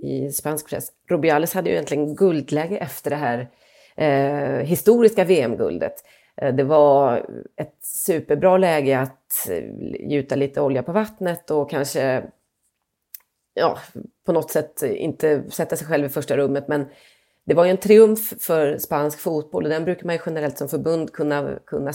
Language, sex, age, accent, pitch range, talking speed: English, female, 30-49, Swedish, 140-175 Hz, 150 wpm